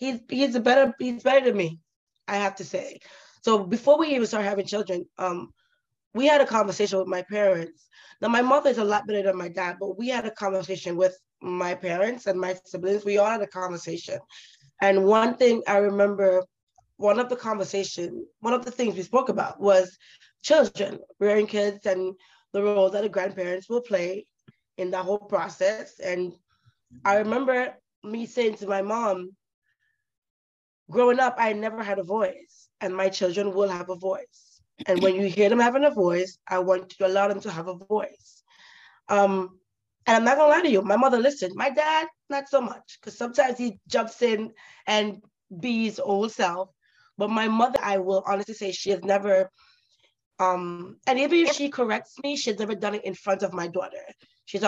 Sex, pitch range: female, 190-240 Hz